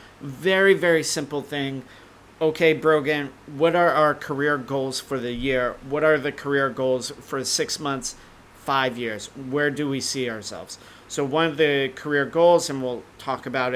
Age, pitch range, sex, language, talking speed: 40-59, 125-155 Hz, male, English, 170 wpm